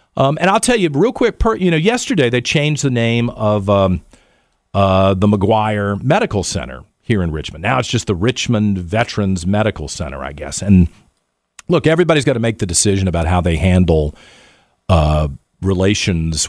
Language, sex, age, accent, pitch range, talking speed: English, male, 50-69, American, 90-135 Hz, 175 wpm